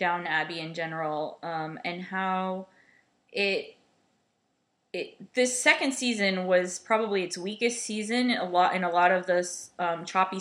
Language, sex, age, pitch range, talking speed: English, female, 20-39, 175-210 Hz, 145 wpm